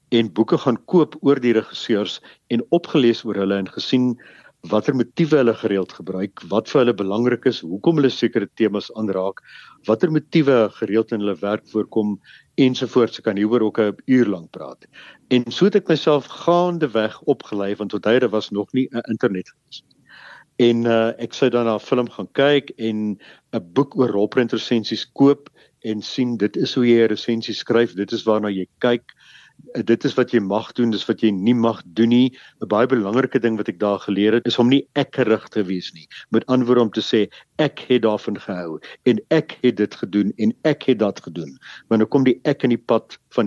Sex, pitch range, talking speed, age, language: male, 105-130 Hz, 200 wpm, 50-69, English